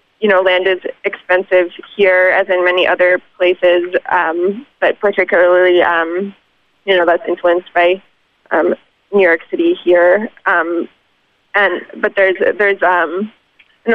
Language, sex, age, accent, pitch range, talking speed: English, female, 20-39, American, 180-205 Hz, 140 wpm